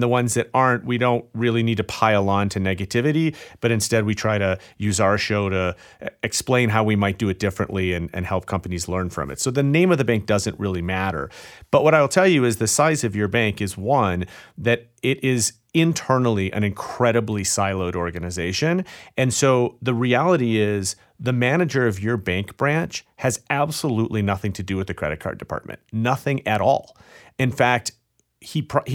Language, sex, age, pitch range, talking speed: English, male, 40-59, 100-130 Hz, 195 wpm